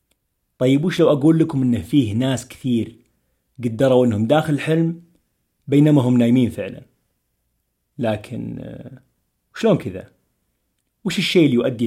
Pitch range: 100-135 Hz